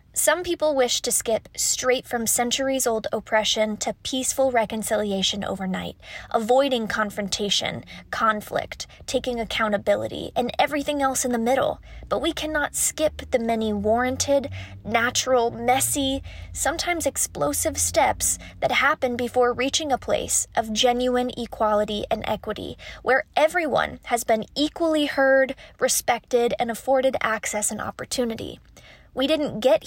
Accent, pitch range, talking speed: American, 220-270 Hz, 125 wpm